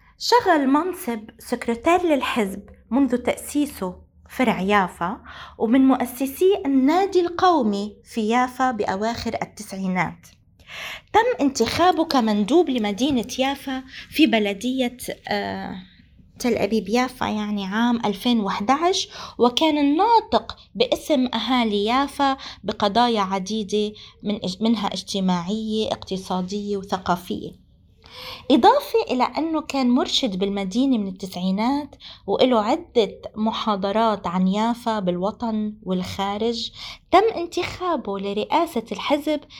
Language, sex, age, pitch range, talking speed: Arabic, female, 20-39, 205-295 Hz, 90 wpm